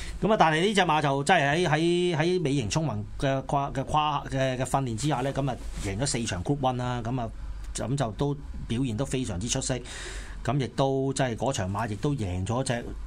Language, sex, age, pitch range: Chinese, male, 30-49, 105-145 Hz